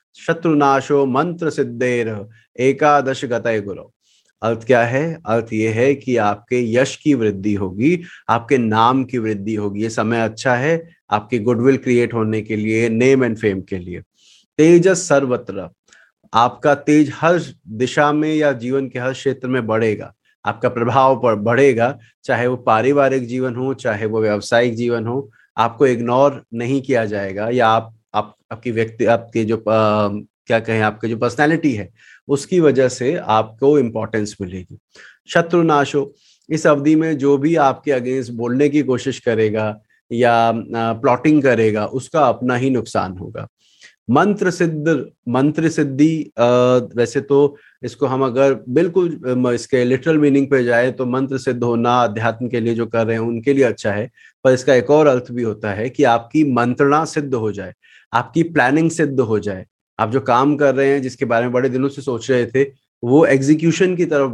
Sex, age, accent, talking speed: male, 30-49, native, 165 wpm